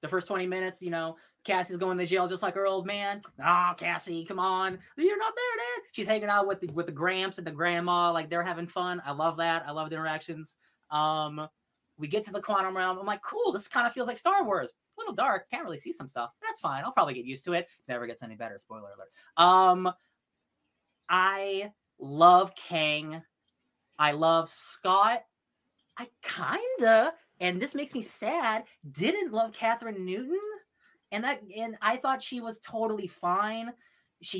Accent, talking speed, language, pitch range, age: American, 195 wpm, English, 165-225 Hz, 20-39